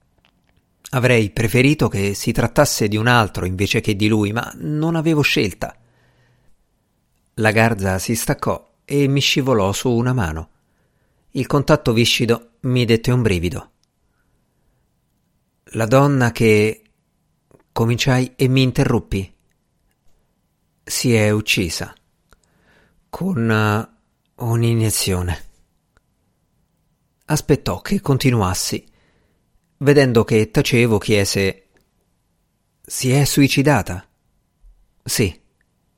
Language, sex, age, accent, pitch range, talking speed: Italian, male, 50-69, native, 100-130 Hz, 95 wpm